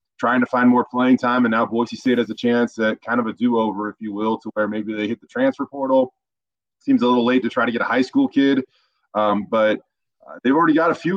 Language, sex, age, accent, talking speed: English, male, 20-39, American, 265 wpm